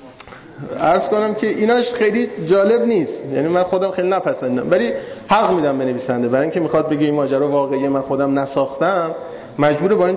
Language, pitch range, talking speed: Persian, 145-190 Hz, 170 wpm